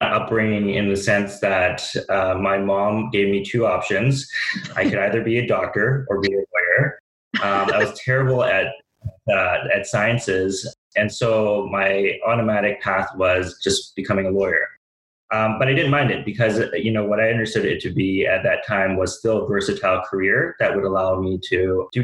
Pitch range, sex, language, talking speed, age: 95-115 Hz, male, English, 190 wpm, 30-49